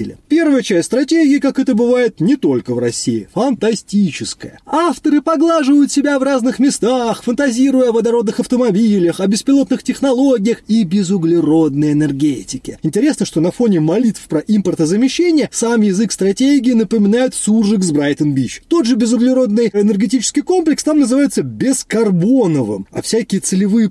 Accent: native